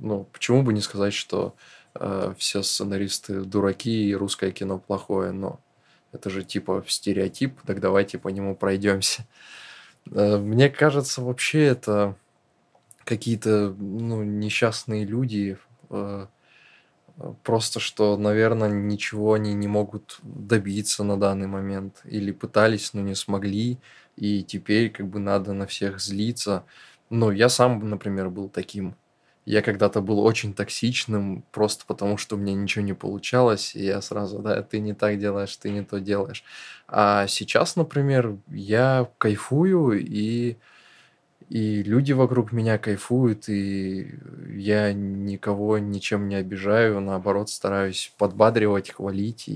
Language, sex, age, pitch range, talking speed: Russian, male, 20-39, 100-110 Hz, 130 wpm